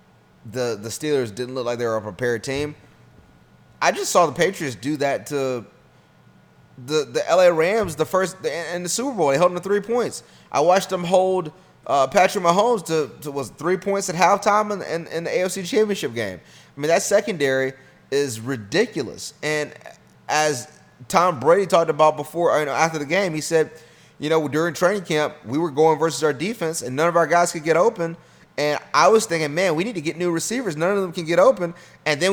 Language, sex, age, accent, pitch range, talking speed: English, male, 30-49, American, 130-185 Hz, 215 wpm